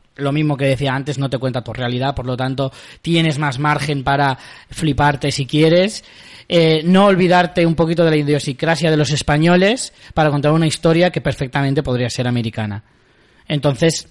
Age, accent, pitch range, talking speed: 20-39, Spanish, 135-170 Hz, 175 wpm